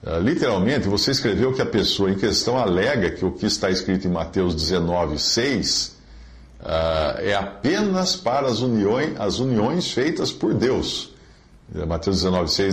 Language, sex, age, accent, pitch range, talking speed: Portuguese, male, 50-69, Brazilian, 85-125 Hz, 125 wpm